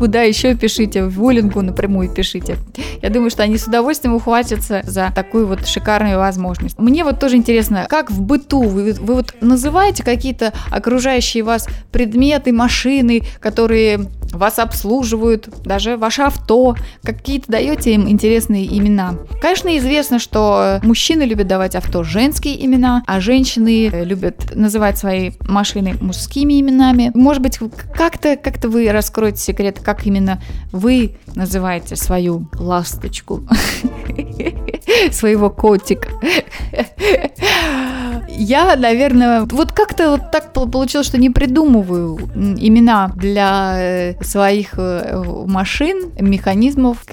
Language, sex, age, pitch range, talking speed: Russian, female, 20-39, 200-260 Hz, 115 wpm